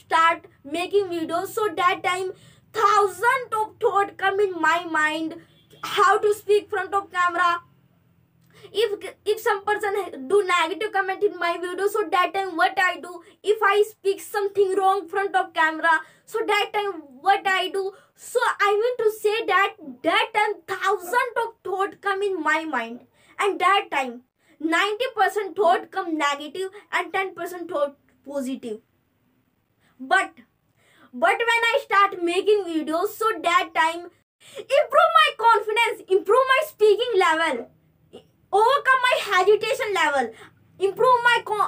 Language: Hindi